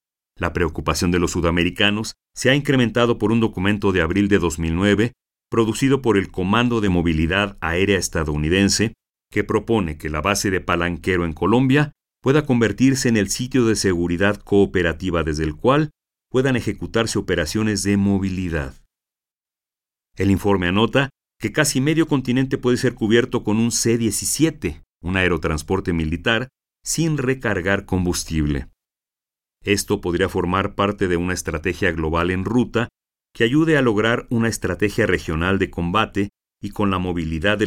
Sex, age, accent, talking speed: male, 50-69, Mexican, 145 wpm